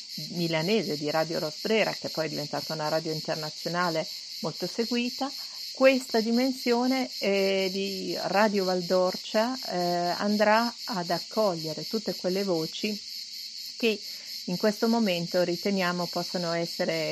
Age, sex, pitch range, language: 50-69, female, 160-210 Hz, Italian